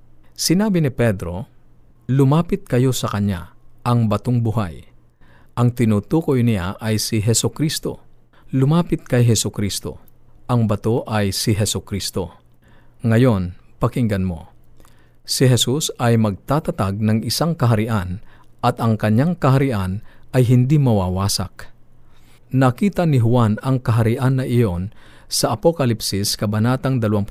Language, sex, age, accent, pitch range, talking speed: Filipino, male, 50-69, native, 105-130 Hz, 115 wpm